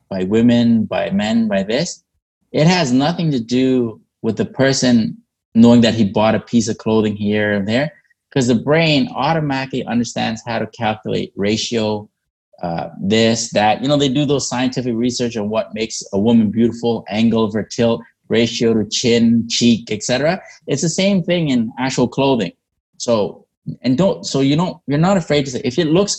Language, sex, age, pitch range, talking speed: English, male, 20-39, 110-135 Hz, 180 wpm